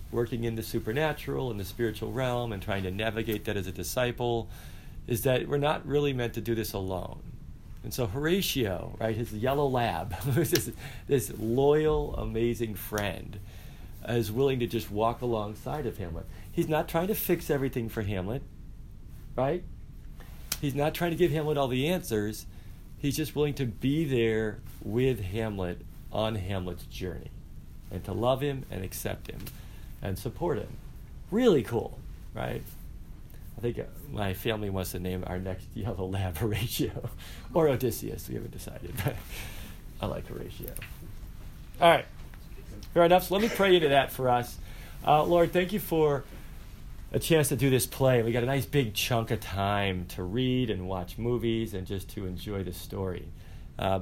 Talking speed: 170 wpm